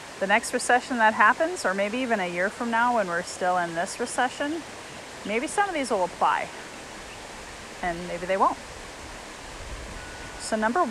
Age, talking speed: 30-49, 165 wpm